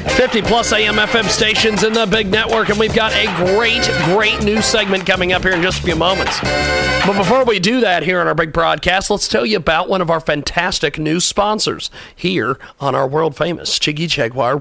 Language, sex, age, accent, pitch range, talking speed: English, male, 40-59, American, 165-215 Hz, 205 wpm